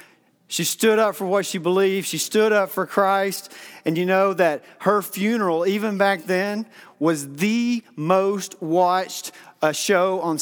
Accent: American